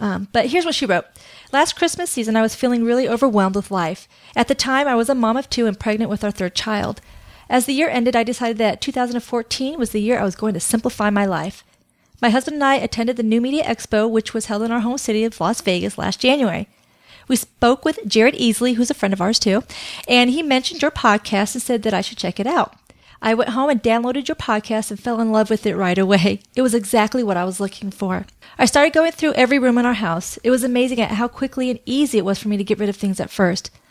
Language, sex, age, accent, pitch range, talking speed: English, female, 40-59, American, 210-260 Hz, 255 wpm